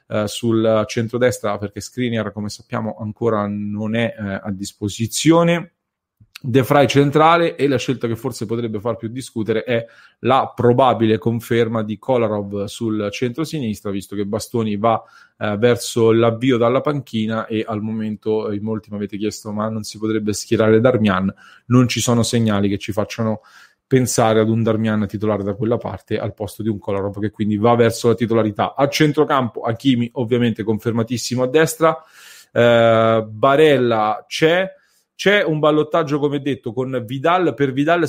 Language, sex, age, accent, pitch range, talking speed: English, male, 30-49, Italian, 110-130 Hz, 160 wpm